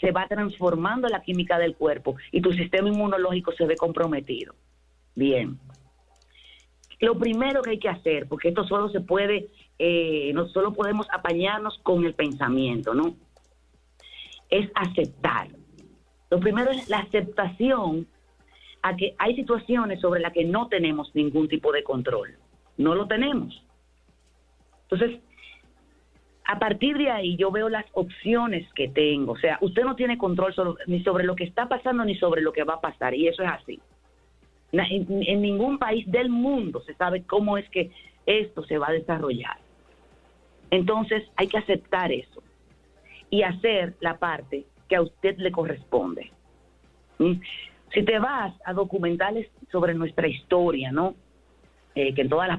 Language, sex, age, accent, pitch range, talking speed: Spanish, female, 40-59, American, 140-205 Hz, 155 wpm